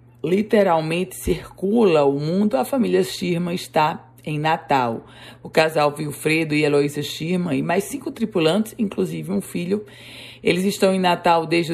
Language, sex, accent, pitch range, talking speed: Portuguese, female, Brazilian, 145-185 Hz, 145 wpm